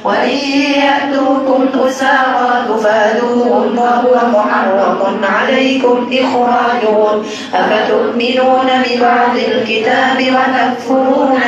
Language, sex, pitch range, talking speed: Indonesian, female, 220-260 Hz, 65 wpm